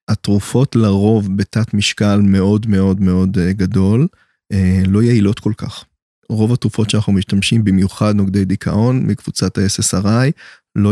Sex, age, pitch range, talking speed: male, 20-39, 100-115 Hz, 120 wpm